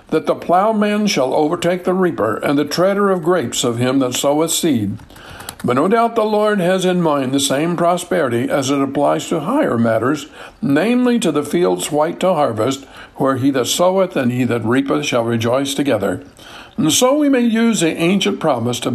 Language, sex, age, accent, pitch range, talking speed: English, male, 60-79, American, 125-185 Hz, 195 wpm